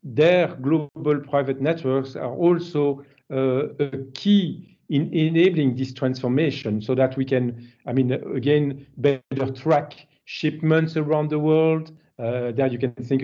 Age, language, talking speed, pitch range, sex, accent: 50-69, English, 140 wpm, 135-160 Hz, male, French